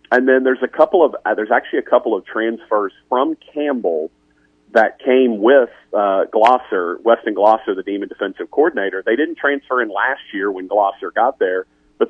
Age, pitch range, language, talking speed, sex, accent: 40-59, 95-125 Hz, English, 185 wpm, male, American